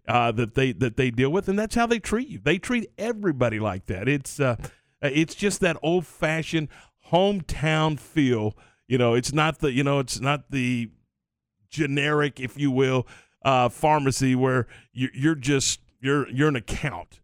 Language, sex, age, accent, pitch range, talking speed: English, male, 40-59, American, 125-160 Hz, 175 wpm